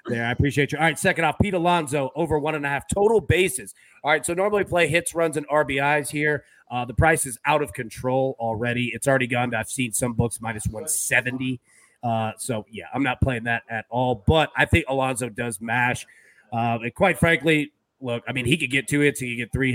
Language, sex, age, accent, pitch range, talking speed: English, male, 30-49, American, 115-150 Hz, 230 wpm